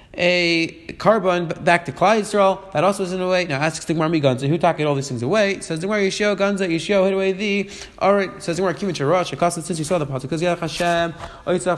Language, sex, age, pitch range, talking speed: English, male, 20-39, 160-195 Hz, 230 wpm